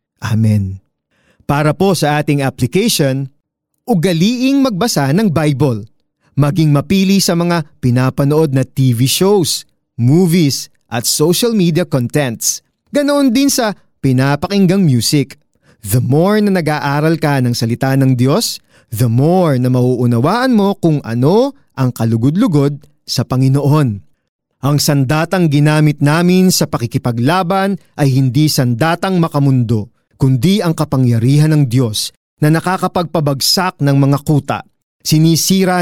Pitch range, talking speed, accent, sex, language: 130-185 Hz, 115 wpm, native, male, Filipino